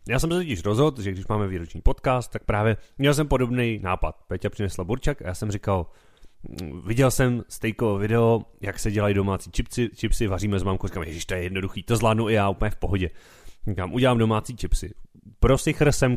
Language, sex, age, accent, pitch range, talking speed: Czech, male, 30-49, native, 95-120 Hz, 205 wpm